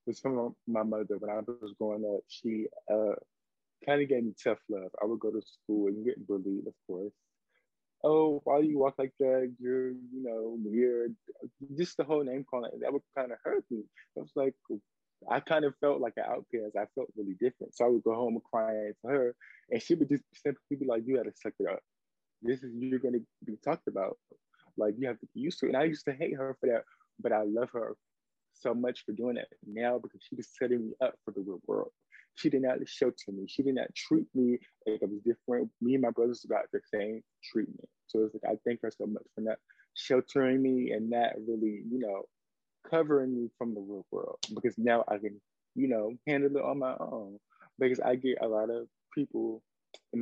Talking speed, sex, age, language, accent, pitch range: 230 wpm, male, 20-39, English, American, 110-140 Hz